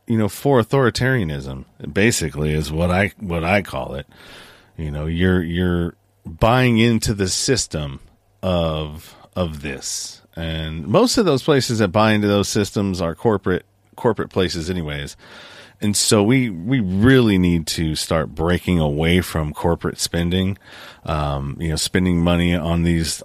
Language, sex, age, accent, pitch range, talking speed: English, male, 40-59, American, 85-105 Hz, 150 wpm